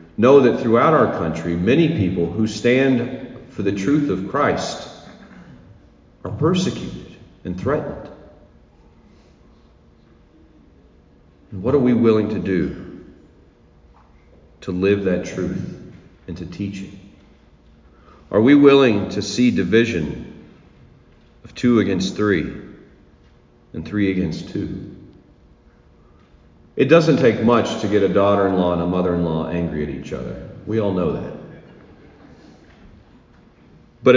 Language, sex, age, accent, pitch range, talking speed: English, male, 40-59, American, 80-110 Hz, 115 wpm